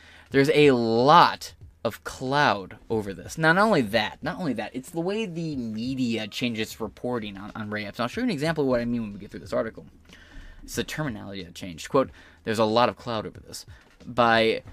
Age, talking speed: 20-39, 215 wpm